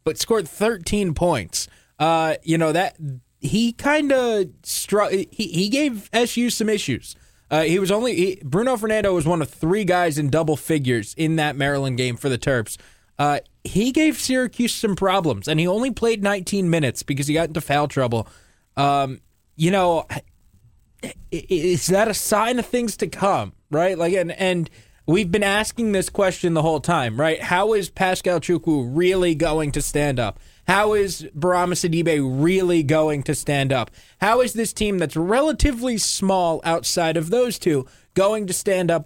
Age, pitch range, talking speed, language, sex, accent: 20-39, 145-195 Hz, 175 wpm, English, male, American